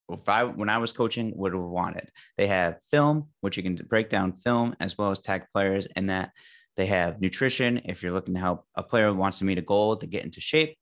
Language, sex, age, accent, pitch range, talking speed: English, male, 30-49, American, 95-115 Hz, 255 wpm